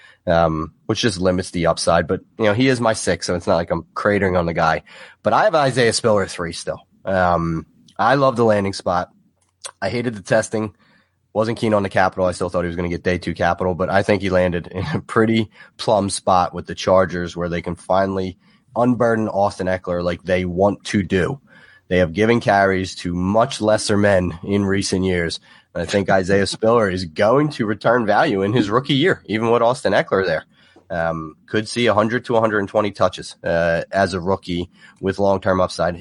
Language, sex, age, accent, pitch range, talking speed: English, male, 30-49, American, 90-110 Hz, 205 wpm